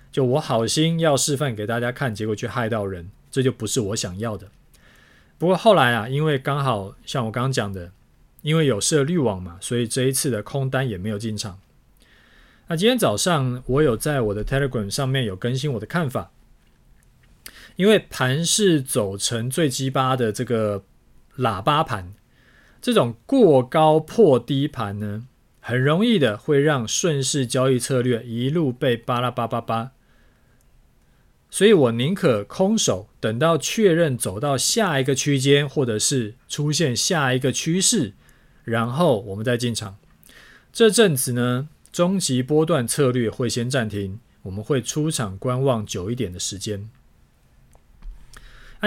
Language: Chinese